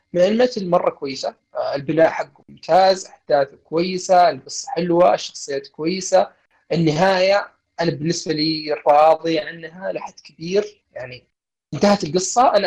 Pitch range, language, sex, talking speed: 145-190 Hz, Arabic, male, 115 wpm